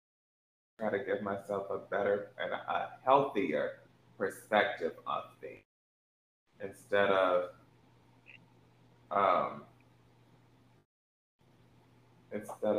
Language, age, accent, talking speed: English, 20-39, American, 70 wpm